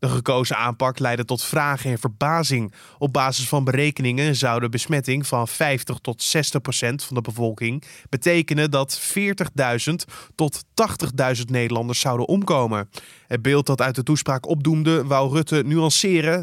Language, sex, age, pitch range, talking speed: Dutch, male, 20-39, 125-160 Hz, 150 wpm